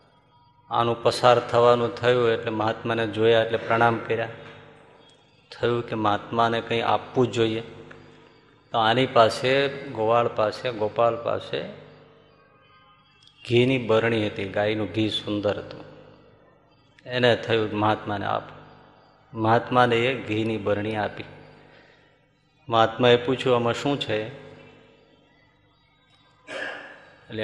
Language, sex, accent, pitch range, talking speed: Gujarati, male, native, 115-135 Hz, 100 wpm